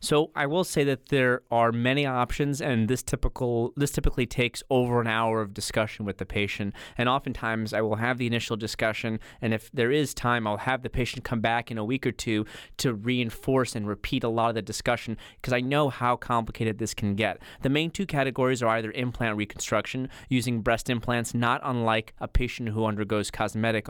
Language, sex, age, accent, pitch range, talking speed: English, male, 30-49, American, 110-125 Hz, 205 wpm